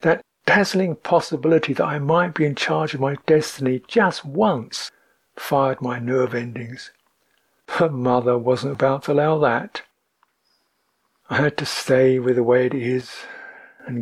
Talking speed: 150 wpm